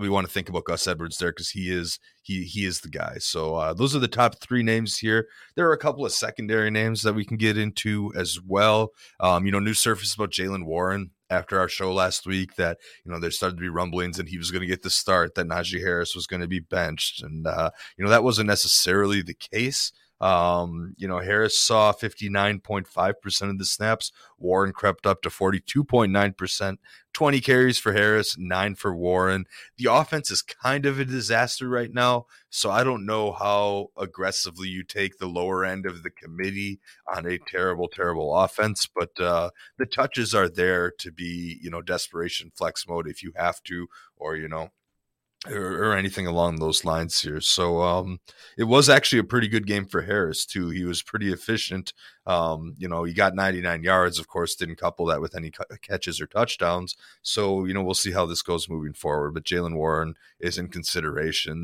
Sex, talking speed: male, 205 wpm